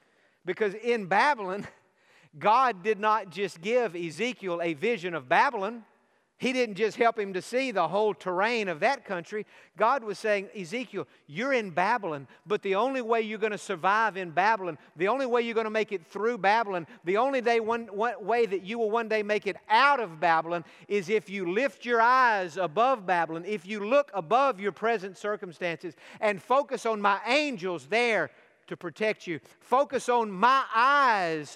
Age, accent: 50-69, American